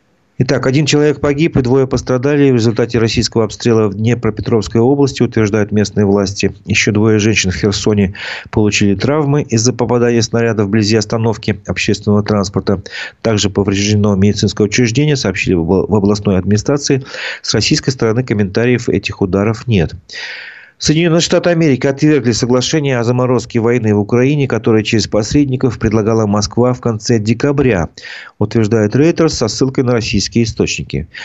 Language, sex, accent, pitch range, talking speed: Russian, male, native, 100-130 Hz, 135 wpm